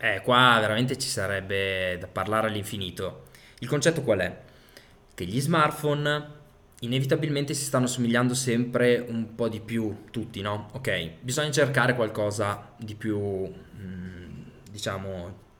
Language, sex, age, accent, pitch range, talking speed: Italian, male, 20-39, native, 105-145 Hz, 125 wpm